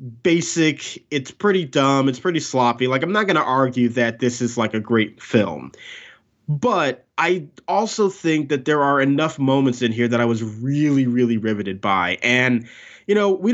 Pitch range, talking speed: 125-155 Hz, 185 wpm